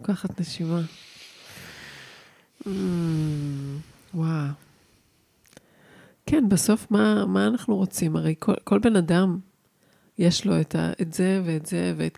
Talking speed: 125 wpm